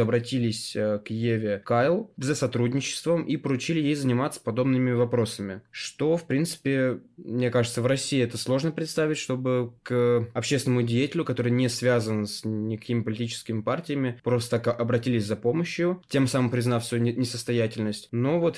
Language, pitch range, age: Russian, 115-140 Hz, 20-39